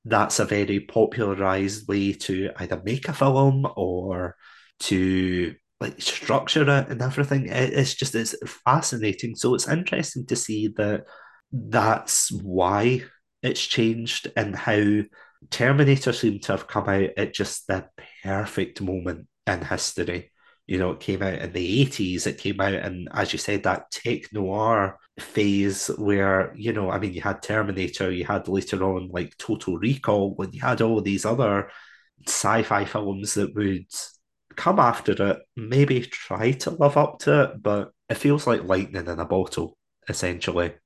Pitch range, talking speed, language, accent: 95-115 Hz, 160 wpm, English, British